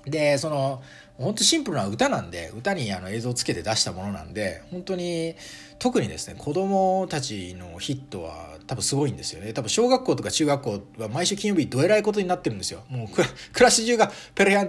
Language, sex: Japanese, male